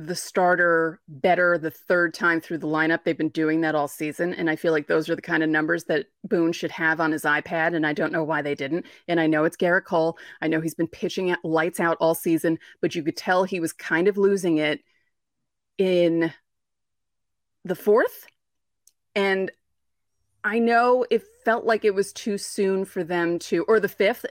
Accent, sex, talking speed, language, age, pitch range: American, female, 205 wpm, English, 30-49, 160-200 Hz